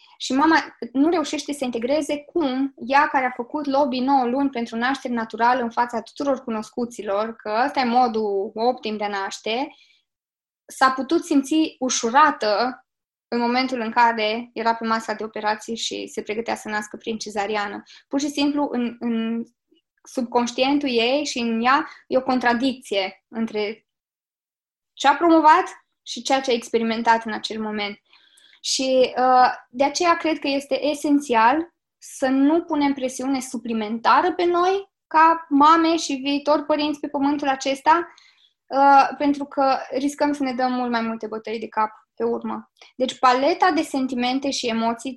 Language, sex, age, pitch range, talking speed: Romanian, female, 20-39, 225-285 Hz, 155 wpm